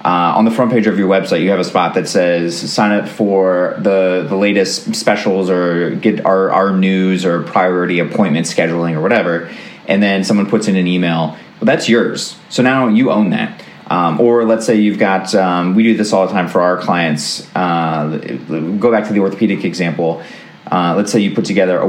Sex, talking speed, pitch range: male, 215 wpm, 90-105 Hz